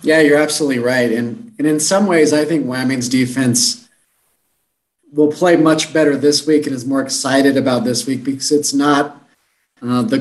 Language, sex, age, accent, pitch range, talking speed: English, male, 30-49, American, 120-145 Hz, 180 wpm